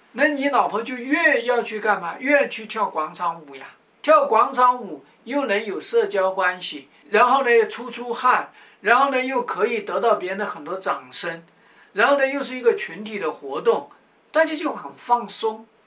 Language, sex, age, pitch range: Chinese, male, 50-69, 190-265 Hz